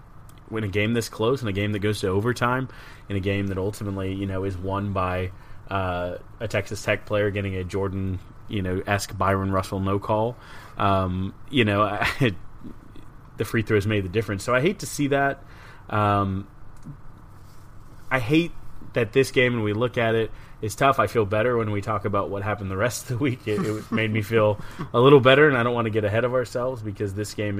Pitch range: 100-120 Hz